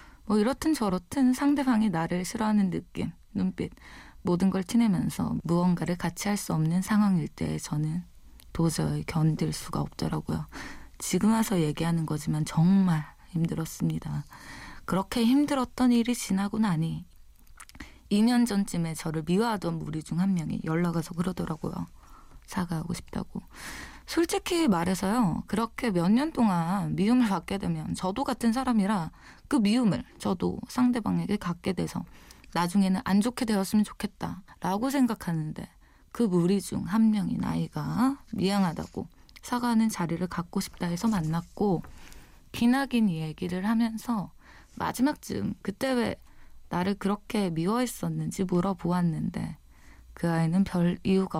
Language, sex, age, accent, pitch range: Korean, female, 20-39, native, 170-225 Hz